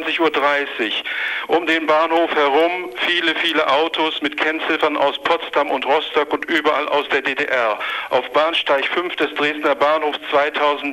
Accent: German